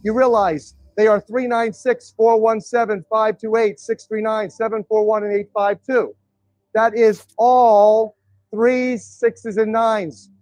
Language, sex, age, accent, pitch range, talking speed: English, male, 40-59, American, 190-225 Hz, 105 wpm